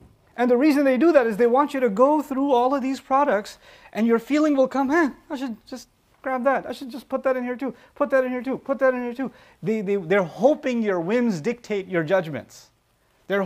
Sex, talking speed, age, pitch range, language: male, 240 wpm, 30-49, 210-270 Hz, English